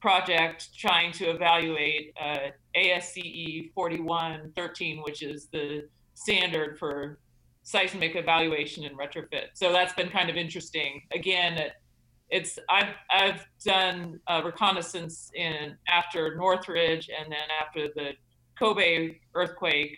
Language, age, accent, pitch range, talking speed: English, 40-59, American, 150-180 Hz, 115 wpm